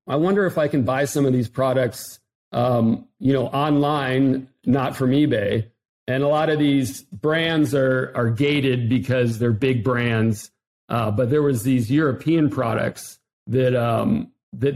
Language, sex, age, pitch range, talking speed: English, male, 40-59, 125-145 Hz, 165 wpm